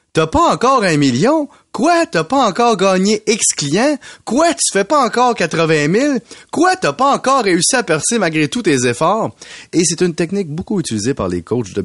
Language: French